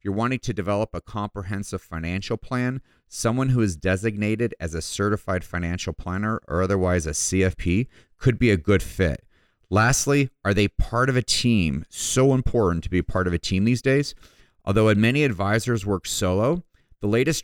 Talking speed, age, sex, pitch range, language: 175 wpm, 30-49, male, 90-115 Hz, English